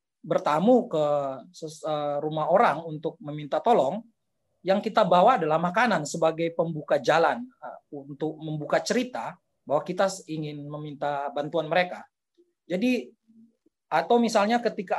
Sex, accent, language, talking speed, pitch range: male, native, Indonesian, 110 wpm, 155-220 Hz